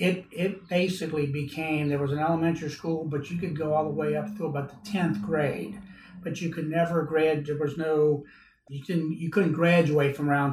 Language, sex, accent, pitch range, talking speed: English, male, American, 145-160 Hz, 210 wpm